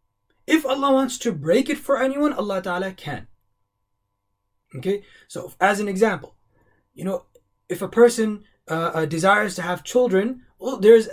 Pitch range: 145-230 Hz